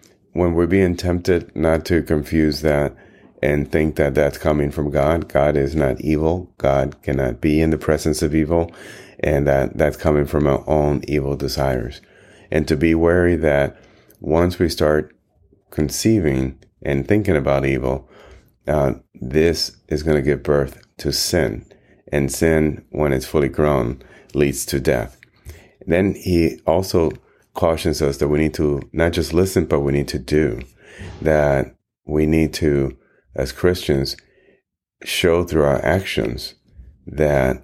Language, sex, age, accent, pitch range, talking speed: English, male, 30-49, American, 70-85 Hz, 150 wpm